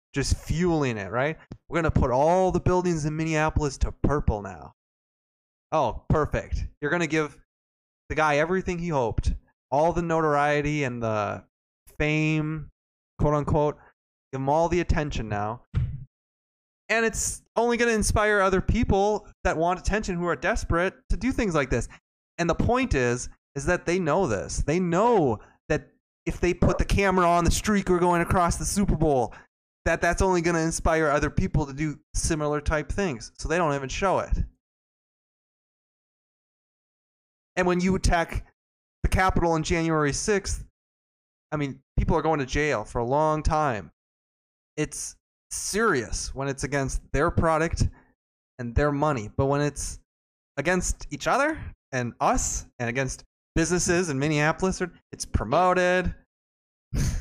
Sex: male